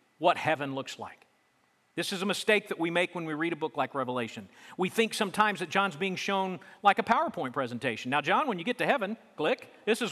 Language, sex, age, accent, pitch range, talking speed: English, male, 40-59, American, 180-245 Hz, 230 wpm